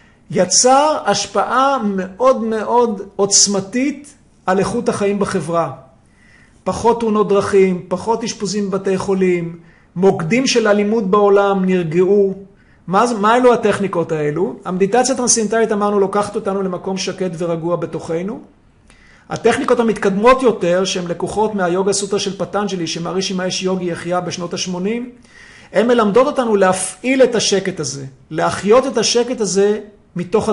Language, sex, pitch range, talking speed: Hebrew, male, 180-225 Hz, 120 wpm